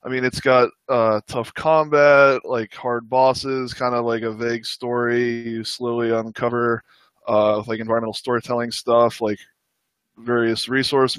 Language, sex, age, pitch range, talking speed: English, male, 20-39, 115-135 Hz, 145 wpm